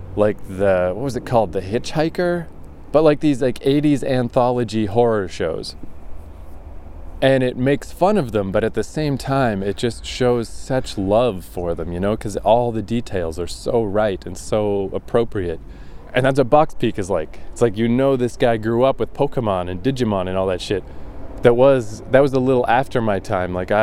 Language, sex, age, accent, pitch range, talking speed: English, male, 20-39, American, 100-130 Hz, 200 wpm